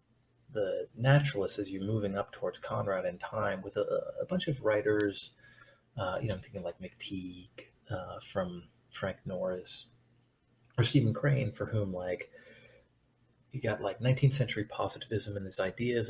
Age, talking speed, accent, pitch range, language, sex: 30-49, 155 wpm, American, 105-140 Hz, English, male